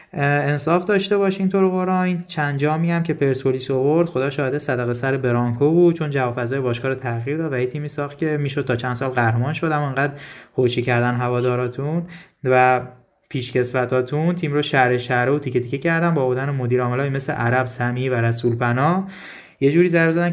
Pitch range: 125-155 Hz